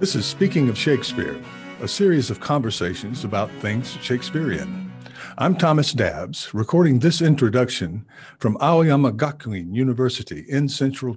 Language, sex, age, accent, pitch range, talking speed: English, male, 50-69, American, 115-150 Hz, 130 wpm